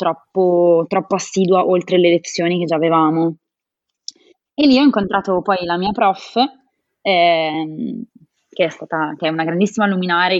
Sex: female